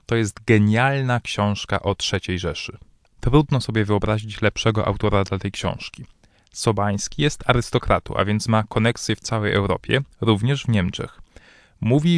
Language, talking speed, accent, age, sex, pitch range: Polish, 145 wpm, native, 20-39, male, 100-125 Hz